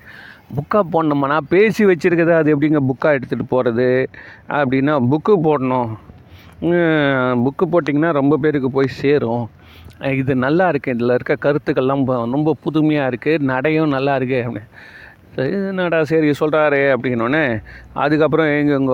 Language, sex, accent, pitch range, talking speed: Tamil, male, native, 130-160 Hz, 115 wpm